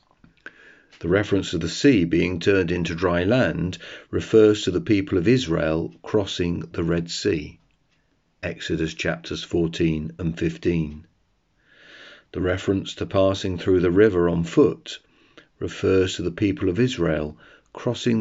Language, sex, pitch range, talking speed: English, male, 85-105 Hz, 135 wpm